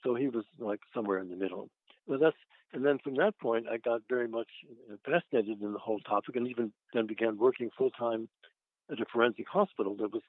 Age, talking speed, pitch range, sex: 60-79, 210 wpm, 110-125 Hz, male